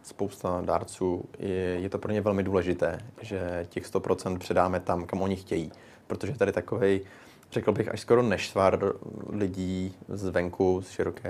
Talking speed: 160 wpm